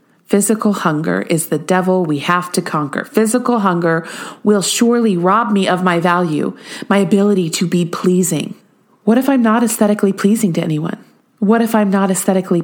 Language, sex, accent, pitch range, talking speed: English, female, American, 185-220 Hz, 170 wpm